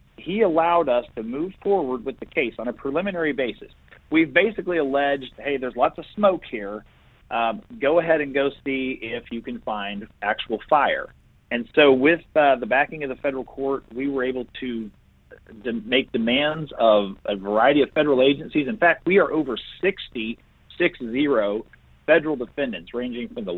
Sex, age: male, 40-59